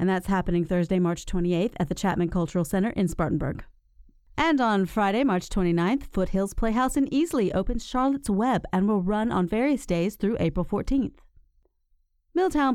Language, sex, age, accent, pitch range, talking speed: English, female, 40-59, American, 185-245 Hz, 165 wpm